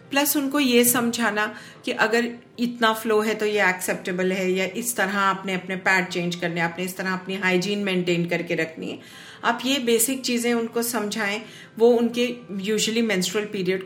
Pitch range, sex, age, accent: 180-235 Hz, female, 50-69, native